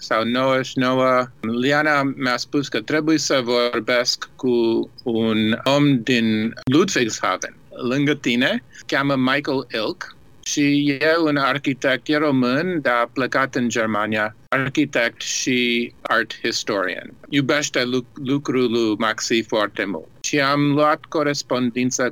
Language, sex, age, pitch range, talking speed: Romanian, male, 50-69, 120-145 Hz, 120 wpm